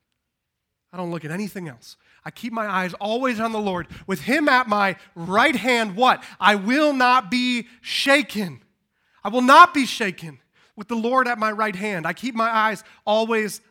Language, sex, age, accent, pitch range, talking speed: English, male, 30-49, American, 195-250 Hz, 190 wpm